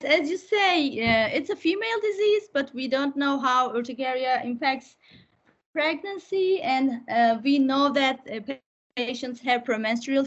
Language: English